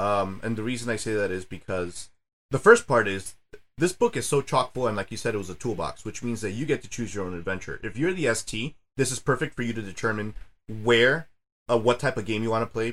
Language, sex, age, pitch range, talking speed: English, male, 30-49, 105-130 Hz, 270 wpm